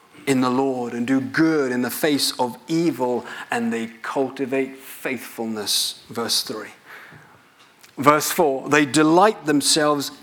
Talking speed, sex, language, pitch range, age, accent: 130 wpm, male, English, 130-185 Hz, 40-59, British